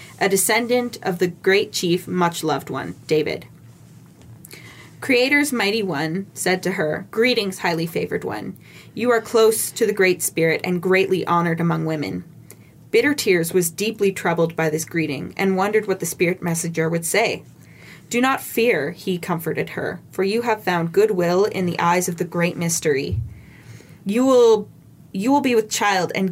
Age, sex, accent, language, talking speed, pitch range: 20-39, female, American, English, 160 wpm, 170-215 Hz